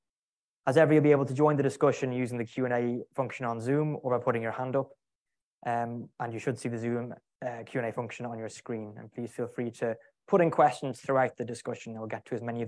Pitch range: 115-130 Hz